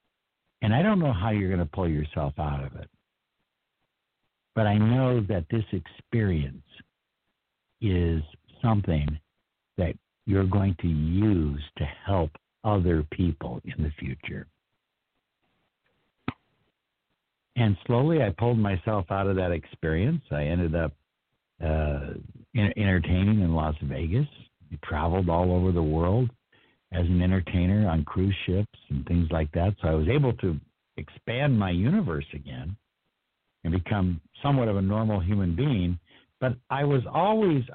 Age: 60-79